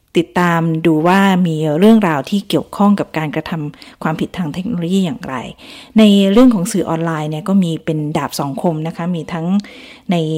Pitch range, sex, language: 155-195 Hz, female, Thai